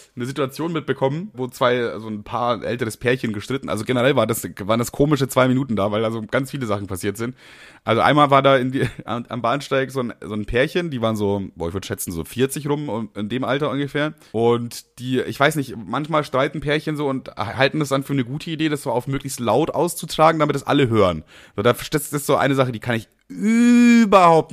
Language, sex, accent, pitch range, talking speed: German, male, German, 125-195 Hz, 230 wpm